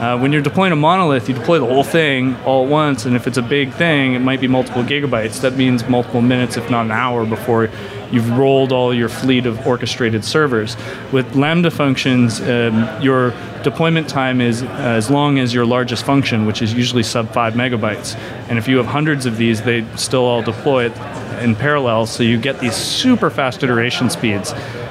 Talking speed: 200 wpm